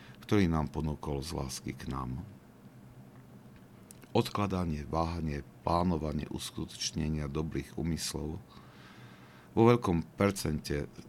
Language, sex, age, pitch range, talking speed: Slovak, male, 50-69, 70-85 Hz, 85 wpm